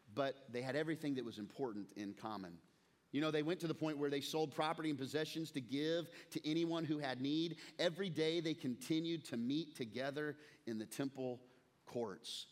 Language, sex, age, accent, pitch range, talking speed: English, male, 40-59, American, 135-185 Hz, 190 wpm